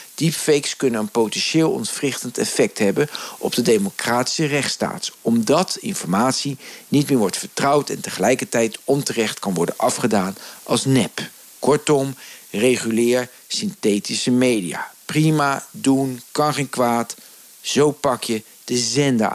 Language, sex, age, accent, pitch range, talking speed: Dutch, male, 50-69, Dutch, 120-165 Hz, 120 wpm